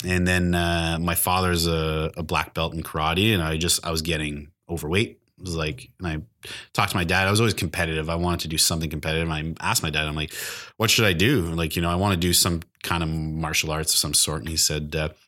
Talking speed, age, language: 260 wpm, 30-49, English